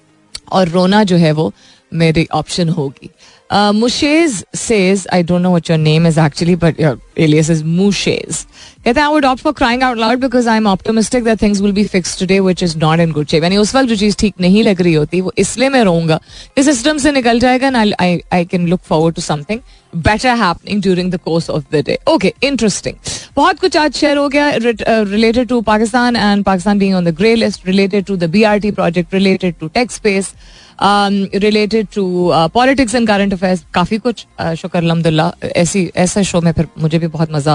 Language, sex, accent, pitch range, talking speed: Hindi, female, native, 165-220 Hz, 200 wpm